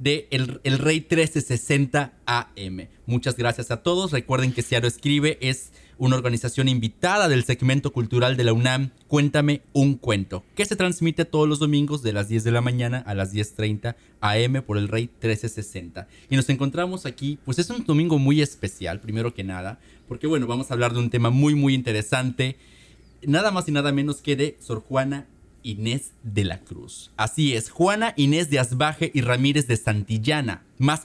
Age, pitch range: 30-49, 110-145 Hz